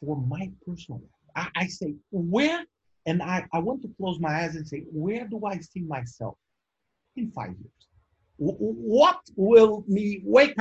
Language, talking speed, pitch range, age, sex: English, 175 wpm, 140-225 Hz, 50-69, male